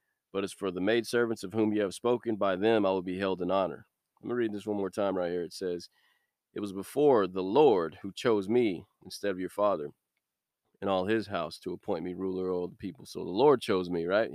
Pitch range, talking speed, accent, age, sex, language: 95-115 Hz, 250 wpm, American, 20-39, male, English